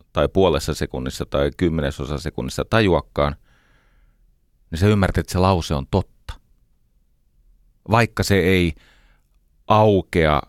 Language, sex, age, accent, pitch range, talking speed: Finnish, male, 30-49, native, 80-105 Hz, 105 wpm